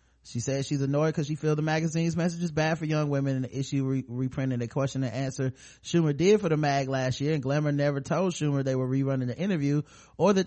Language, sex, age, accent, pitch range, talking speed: English, male, 30-49, American, 120-145 Hz, 240 wpm